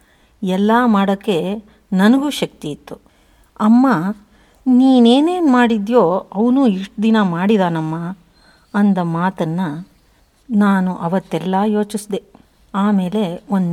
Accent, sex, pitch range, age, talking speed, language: native, female, 175-215 Hz, 50-69, 85 wpm, Kannada